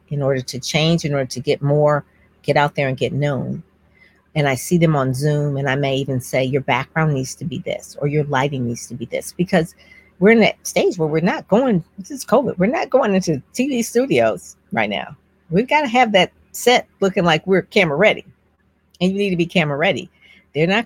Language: English